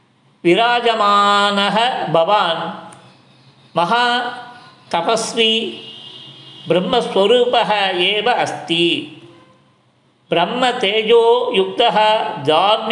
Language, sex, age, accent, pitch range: Tamil, male, 50-69, native, 165-220 Hz